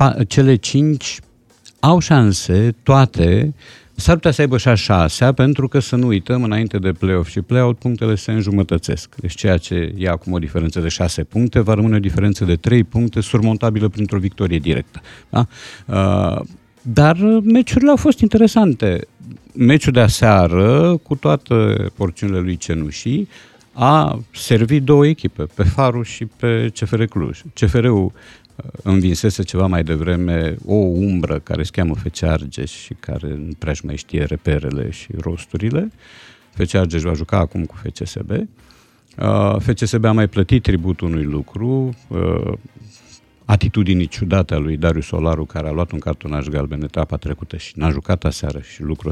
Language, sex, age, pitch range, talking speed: Romanian, male, 50-69, 85-120 Hz, 150 wpm